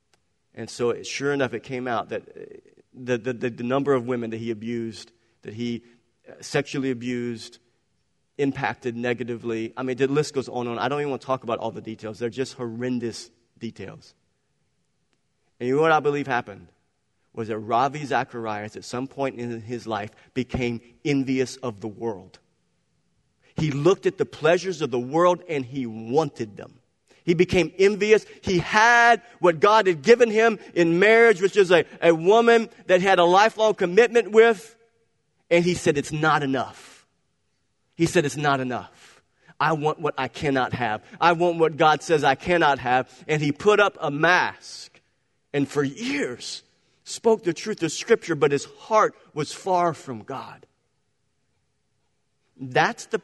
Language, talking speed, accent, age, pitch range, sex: English, 170 wpm, American, 40-59, 120-180 Hz, male